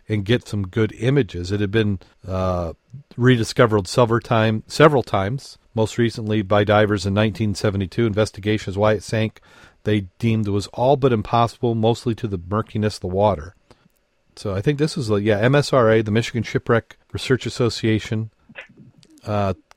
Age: 40-59